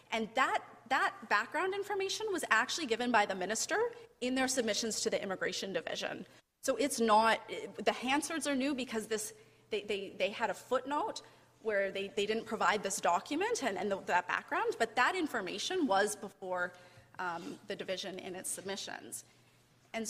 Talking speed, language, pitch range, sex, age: 175 wpm, English, 200-270 Hz, female, 30-49